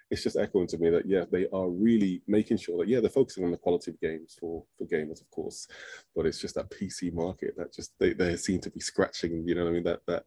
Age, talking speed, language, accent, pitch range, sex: 20-39, 275 wpm, English, British, 85-95 Hz, male